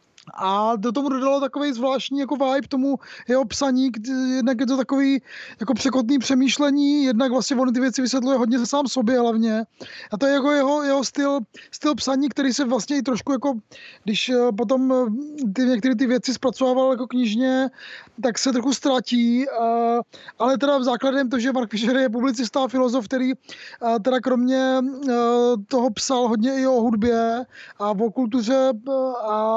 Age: 20-39